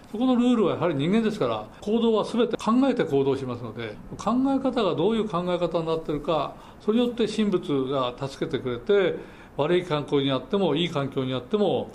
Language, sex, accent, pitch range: Japanese, male, native, 135-215 Hz